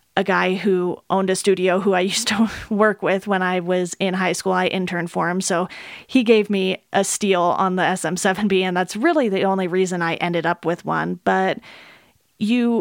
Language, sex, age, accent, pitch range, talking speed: English, female, 30-49, American, 185-210 Hz, 205 wpm